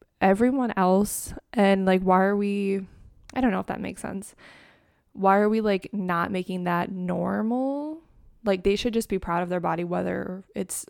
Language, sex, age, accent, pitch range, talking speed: English, female, 20-39, American, 185-225 Hz, 180 wpm